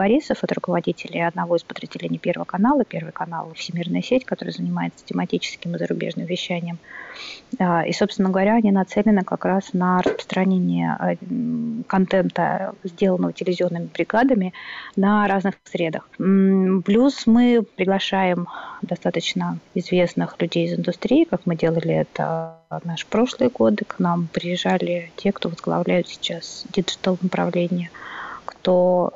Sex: female